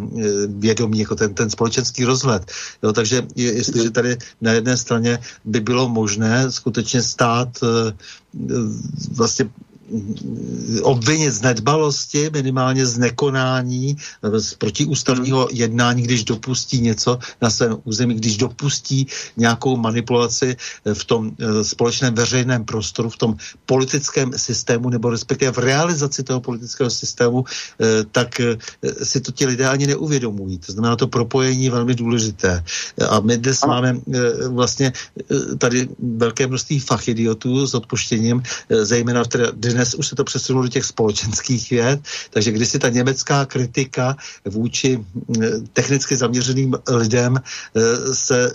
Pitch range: 115-130 Hz